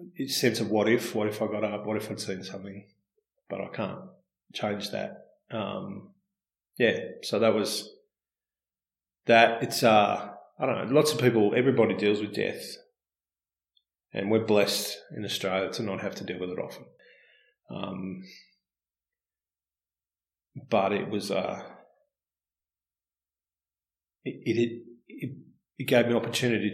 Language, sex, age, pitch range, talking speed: English, male, 30-49, 90-115 Hz, 145 wpm